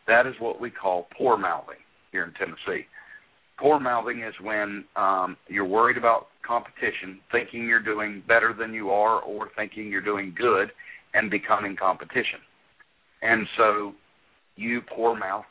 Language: English